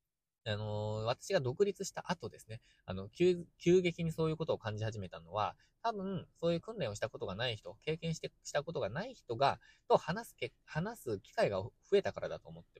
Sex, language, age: male, Japanese, 20-39